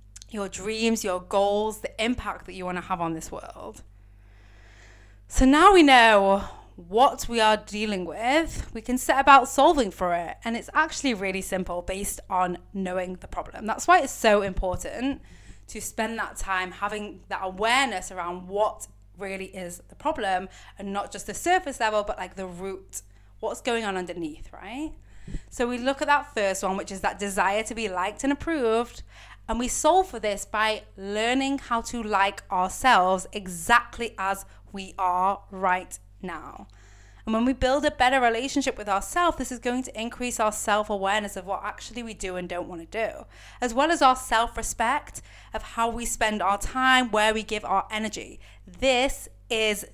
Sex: female